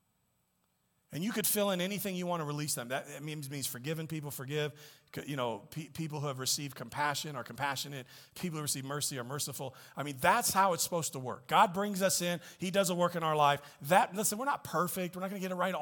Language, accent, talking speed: English, American, 240 wpm